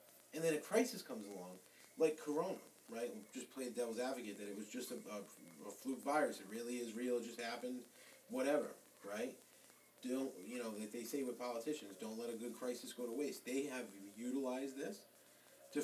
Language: English